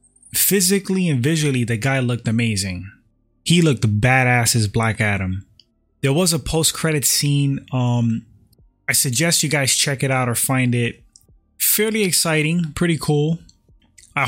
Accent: American